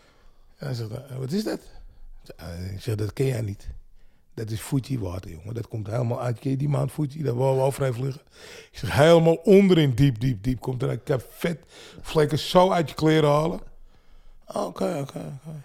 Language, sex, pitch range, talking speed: Dutch, male, 110-150 Hz, 190 wpm